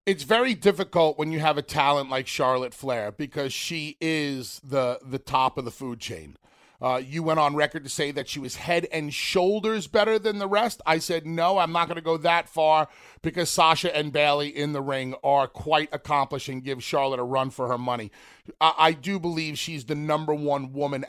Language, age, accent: English, 40-59, American